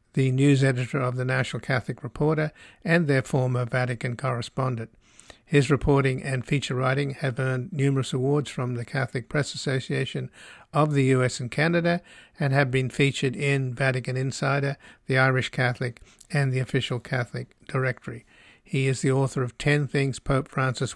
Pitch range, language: 130-145 Hz, English